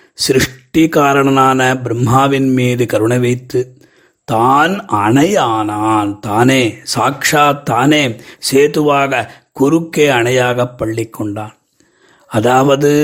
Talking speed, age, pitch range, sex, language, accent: 70 wpm, 30-49, 120-140 Hz, male, Tamil, native